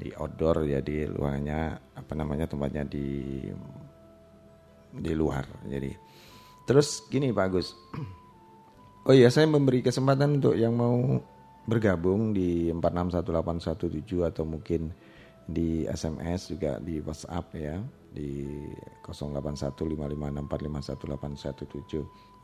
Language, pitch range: Indonesian, 70-90 Hz